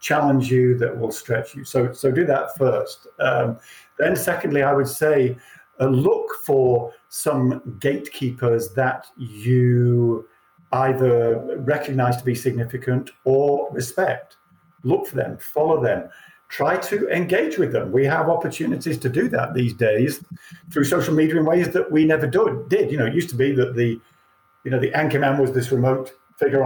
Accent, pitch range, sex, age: British, 125-155 Hz, male, 50-69